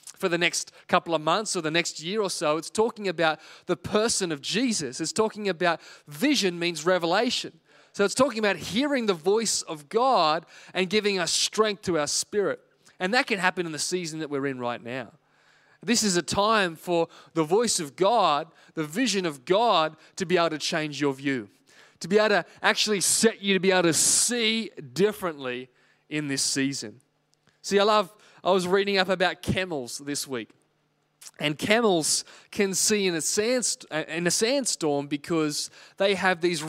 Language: English